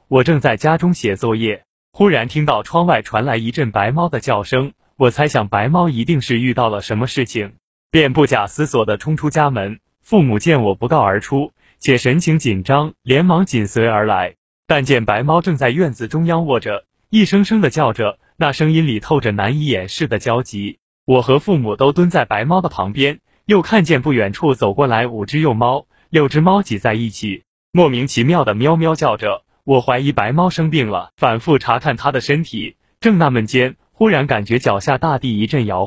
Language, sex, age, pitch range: Chinese, male, 20-39, 115-155 Hz